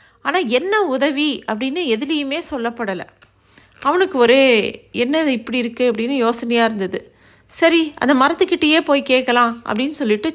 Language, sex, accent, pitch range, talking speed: Tamil, female, native, 205-265 Hz, 120 wpm